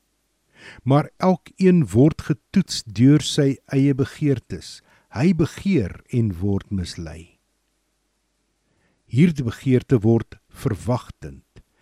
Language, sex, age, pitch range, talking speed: English, male, 50-69, 100-135 Hz, 95 wpm